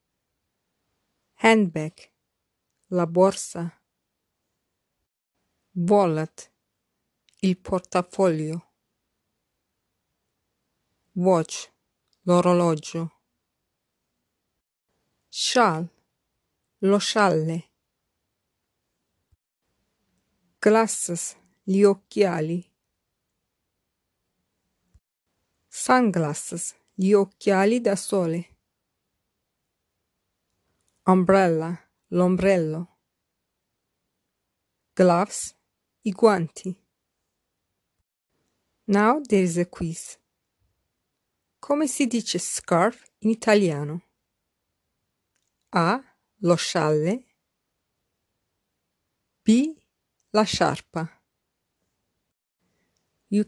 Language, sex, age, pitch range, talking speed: English, female, 50-69, 160-205 Hz, 45 wpm